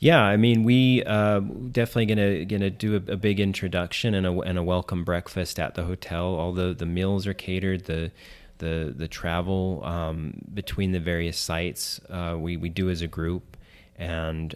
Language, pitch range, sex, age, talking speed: English, 85-95 Hz, male, 30-49, 185 wpm